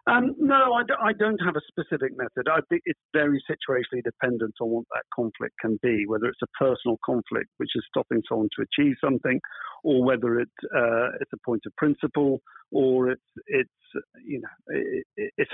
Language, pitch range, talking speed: English, 115-145 Hz, 170 wpm